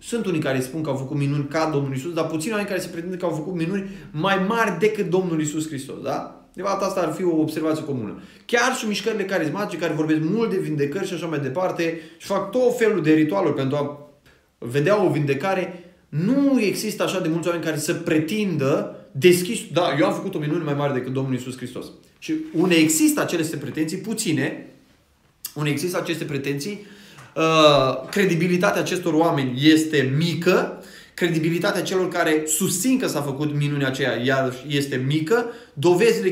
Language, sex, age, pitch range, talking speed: Romanian, male, 20-39, 140-185 Hz, 180 wpm